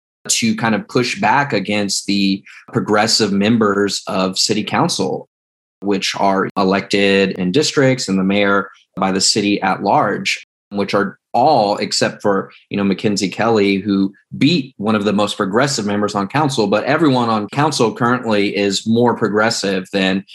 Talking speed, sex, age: 155 wpm, male, 20-39